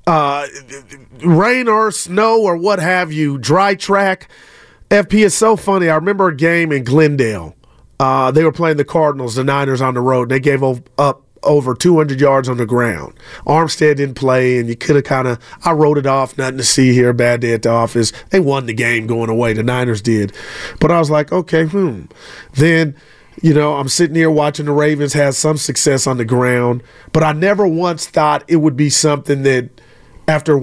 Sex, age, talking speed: male, 30-49, 200 wpm